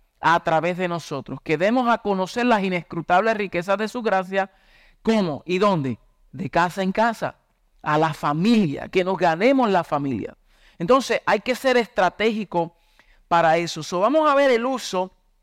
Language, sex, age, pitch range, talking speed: Spanish, male, 50-69, 165-205 Hz, 165 wpm